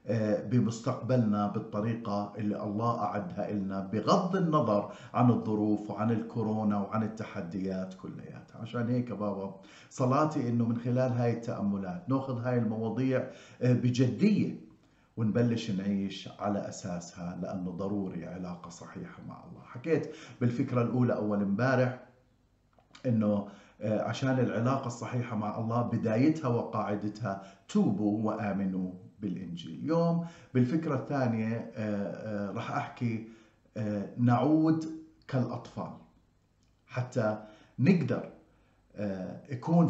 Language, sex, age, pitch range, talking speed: Arabic, male, 50-69, 105-130 Hz, 95 wpm